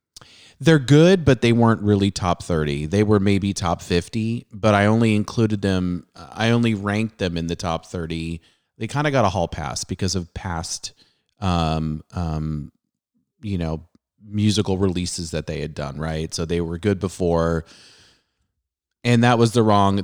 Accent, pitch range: American, 85-110 Hz